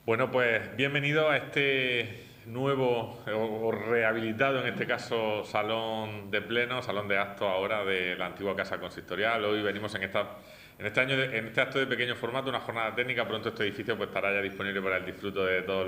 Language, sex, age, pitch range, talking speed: Spanish, male, 30-49, 95-120 Hz, 195 wpm